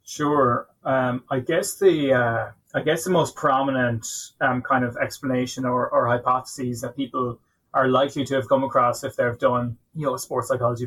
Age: 20-39